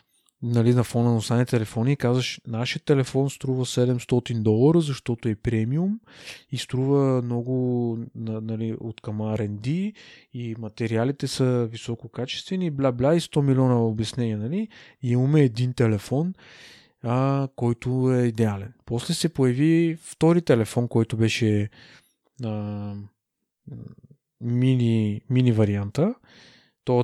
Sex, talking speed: male, 115 wpm